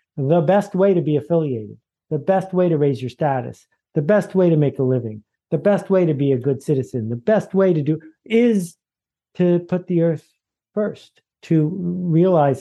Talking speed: 195 wpm